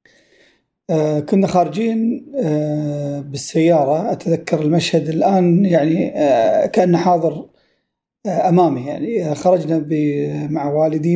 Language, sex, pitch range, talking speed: Arabic, male, 150-180 Hz, 100 wpm